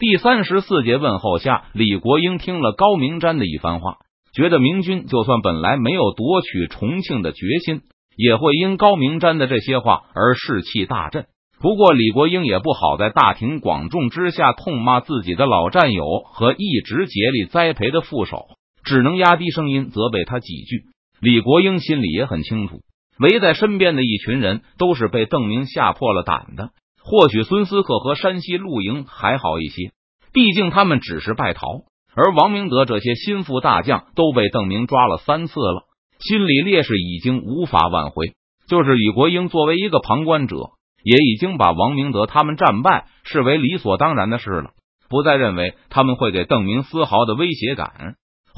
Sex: male